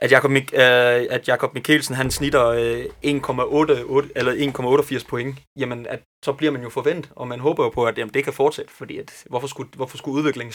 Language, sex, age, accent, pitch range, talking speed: Danish, male, 20-39, native, 115-140 Hz, 215 wpm